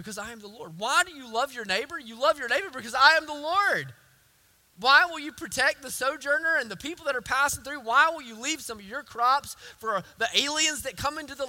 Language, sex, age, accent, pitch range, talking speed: English, male, 20-39, American, 160-265 Hz, 250 wpm